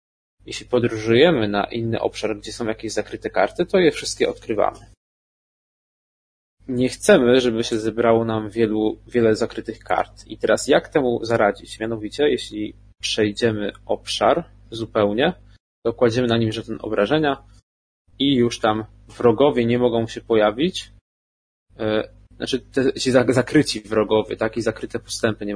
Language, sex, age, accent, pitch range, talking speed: Polish, male, 20-39, native, 100-120 Hz, 135 wpm